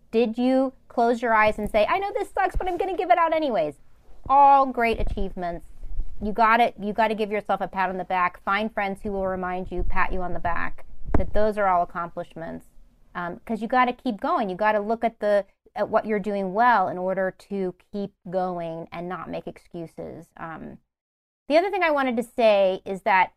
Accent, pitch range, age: American, 180-230 Hz, 30-49